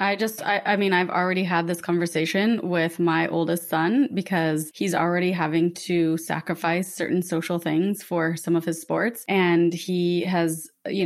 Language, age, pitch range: English, 20-39, 165-190 Hz